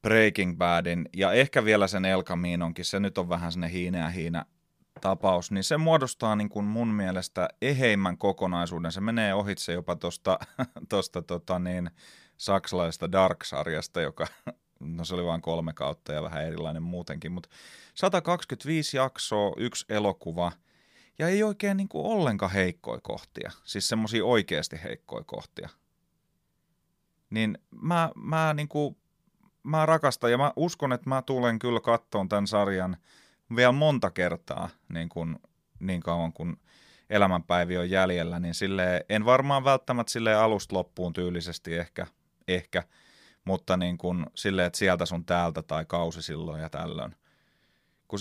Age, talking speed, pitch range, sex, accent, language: 30-49, 145 wpm, 85-120 Hz, male, native, Finnish